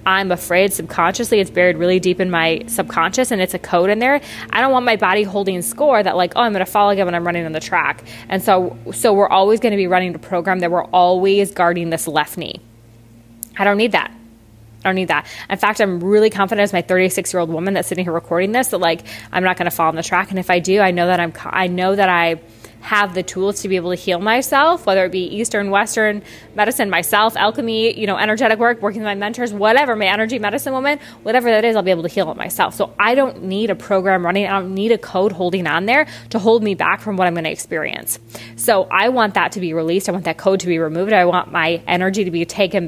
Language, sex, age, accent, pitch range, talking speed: English, female, 20-39, American, 175-220 Hz, 260 wpm